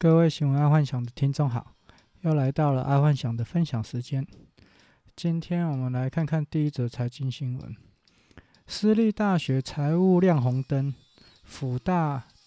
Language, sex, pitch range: Chinese, male, 125-155 Hz